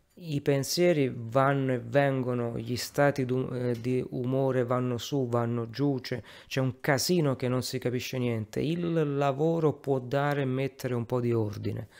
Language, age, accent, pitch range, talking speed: Italian, 30-49, native, 120-145 Hz, 165 wpm